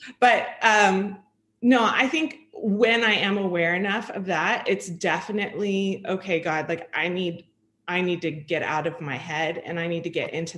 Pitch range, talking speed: 165-200 Hz, 185 wpm